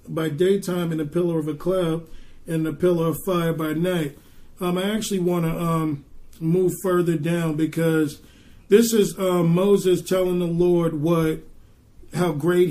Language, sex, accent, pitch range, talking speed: English, male, American, 165-190 Hz, 160 wpm